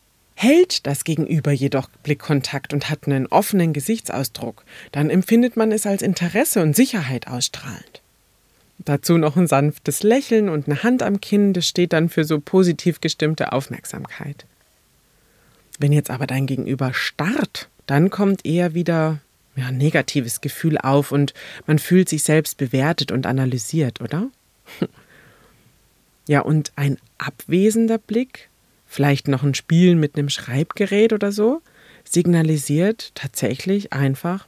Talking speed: 135 wpm